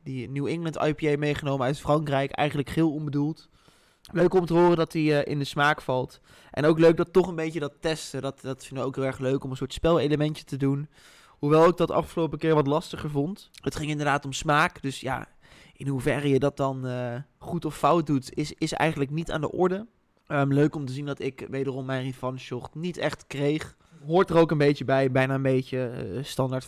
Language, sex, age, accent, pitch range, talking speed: Dutch, male, 20-39, Dutch, 140-165 Hz, 225 wpm